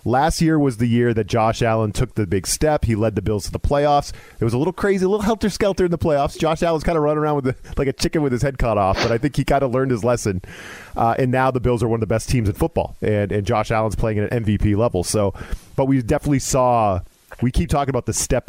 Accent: American